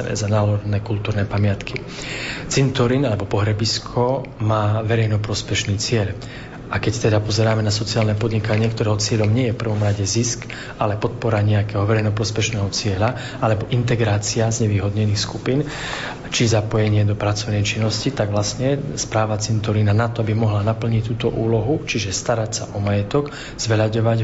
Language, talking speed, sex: Slovak, 140 wpm, male